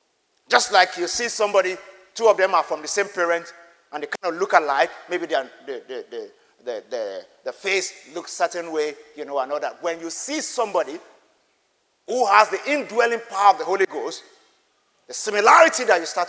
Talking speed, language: 185 wpm, English